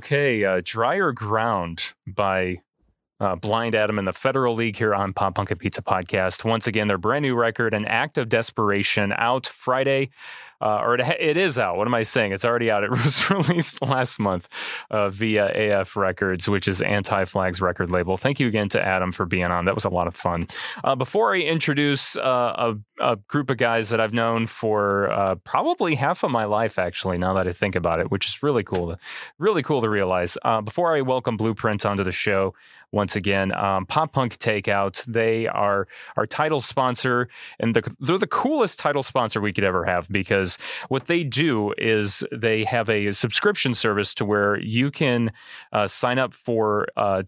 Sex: male